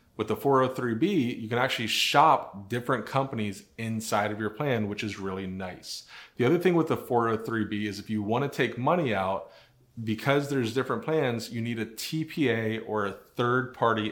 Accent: American